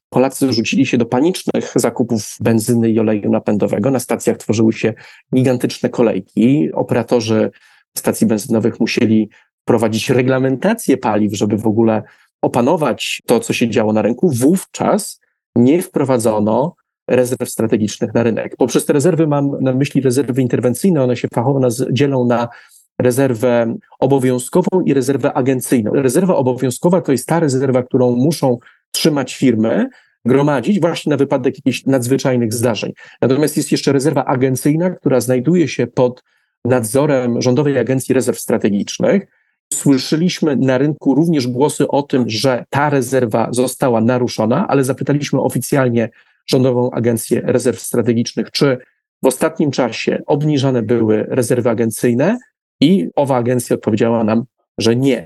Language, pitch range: Polish, 120-140 Hz